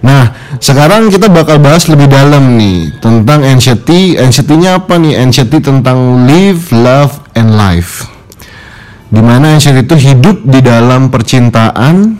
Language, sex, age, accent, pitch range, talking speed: Indonesian, male, 30-49, native, 110-140 Hz, 130 wpm